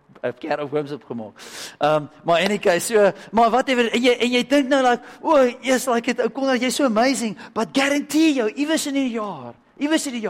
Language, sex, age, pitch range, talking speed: English, male, 50-69, 135-225 Hz, 215 wpm